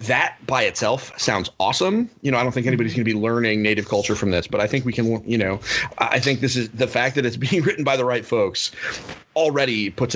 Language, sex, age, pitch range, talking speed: English, male, 30-49, 110-135 Hz, 250 wpm